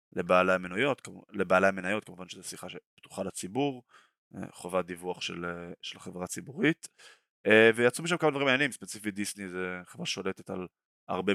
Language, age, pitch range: Hebrew, 20-39, 95-110 Hz